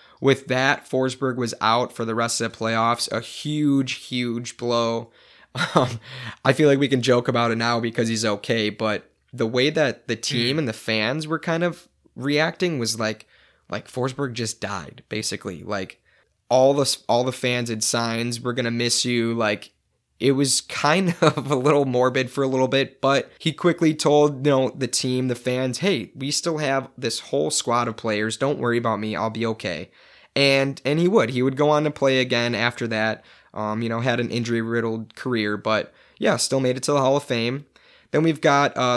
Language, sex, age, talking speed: English, male, 20-39, 205 wpm